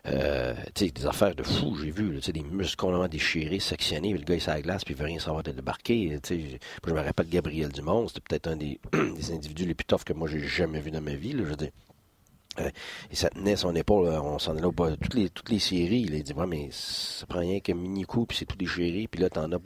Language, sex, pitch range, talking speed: French, male, 75-90 Hz, 265 wpm